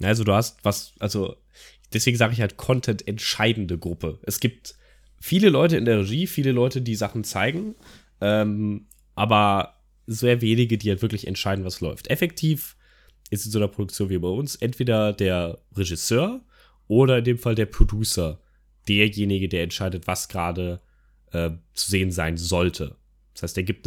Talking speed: 165 wpm